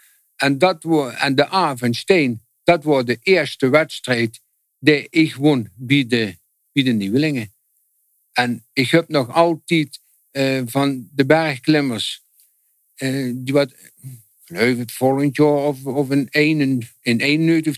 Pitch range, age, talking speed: 120-150 Hz, 60-79, 125 wpm